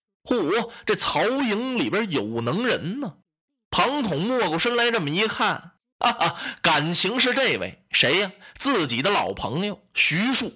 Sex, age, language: male, 20-39, Chinese